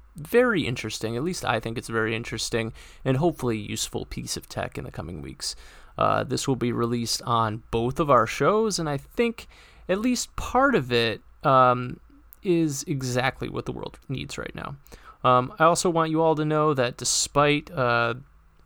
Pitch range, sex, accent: 120-150 Hz, male, American